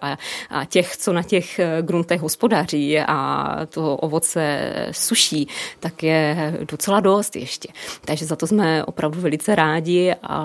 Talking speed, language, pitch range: 140 wpm, Czech, 160-180 Hz